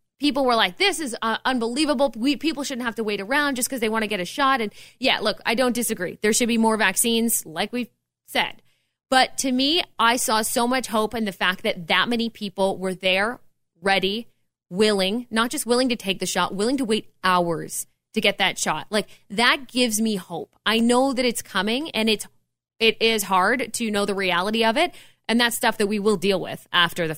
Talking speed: 220 wpm